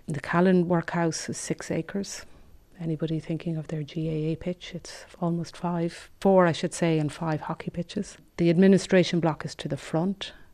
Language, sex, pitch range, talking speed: English, female, 155-170 Hz, 170 wpm